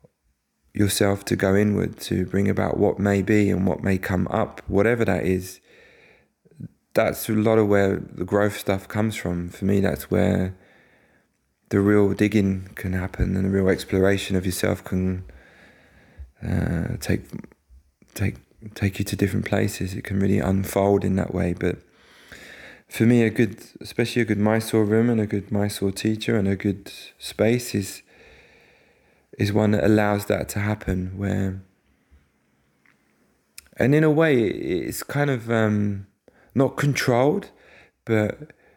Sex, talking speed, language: male, 150 wpm, English